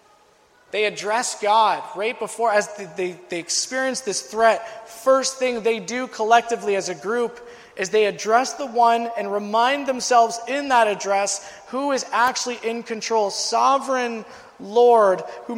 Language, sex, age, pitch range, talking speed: English, male, 20-39, 215-265 Hz, 145 wpm